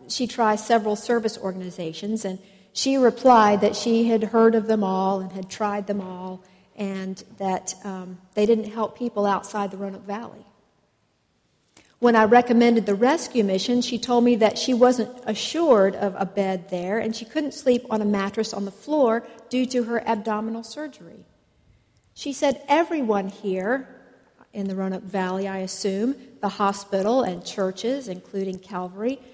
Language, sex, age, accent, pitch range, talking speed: English, female, 50-69, American, 195-240 Hz, 160 wpm